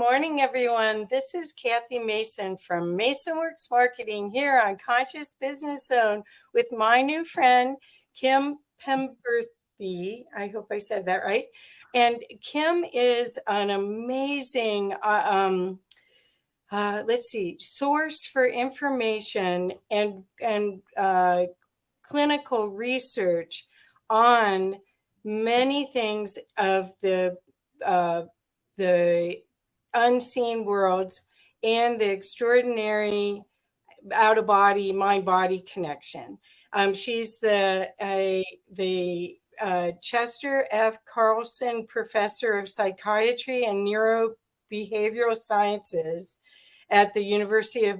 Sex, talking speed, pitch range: female, 100 wpm, 200-250 Hz